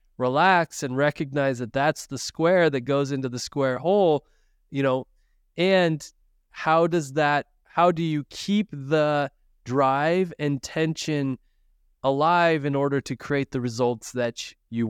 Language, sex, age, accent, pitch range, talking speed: English, male, 20-39, American, 130-165 Hz, 145 wpm